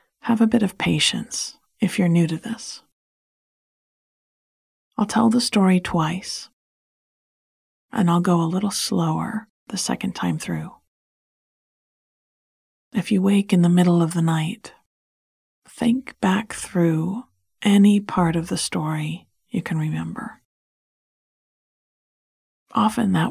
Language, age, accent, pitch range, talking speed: English, 40-59, American, 160-210 Hz, 120 wpm